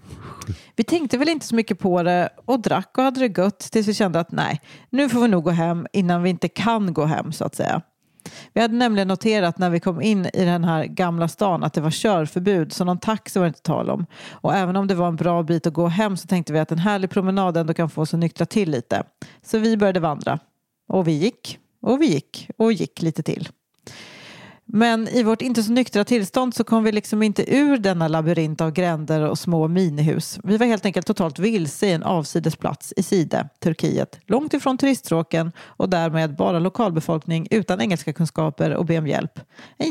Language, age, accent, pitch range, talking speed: Swedish, 40-59, native, 165-220 Hz, 215 wpm